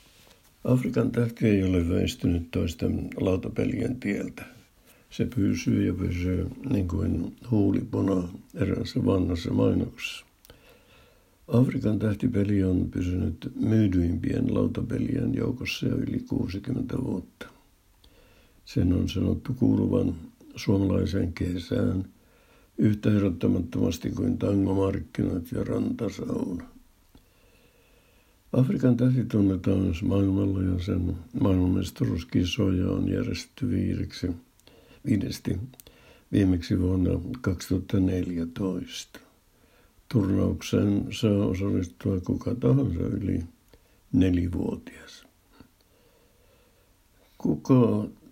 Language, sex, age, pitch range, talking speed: Finnish, male, 60-79, 90-115 Hz, 80 wpm